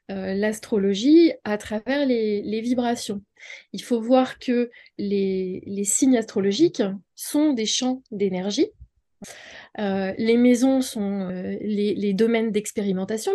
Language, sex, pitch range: French, female, 210-280 Hz